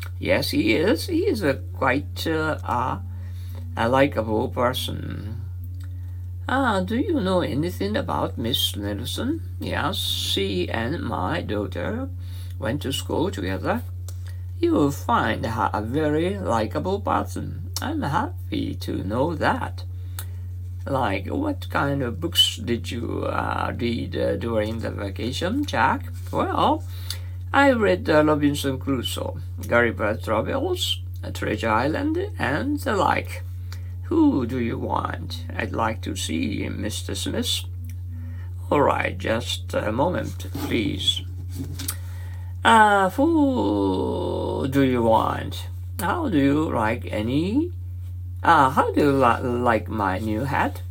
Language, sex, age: Japanese, male, 60-79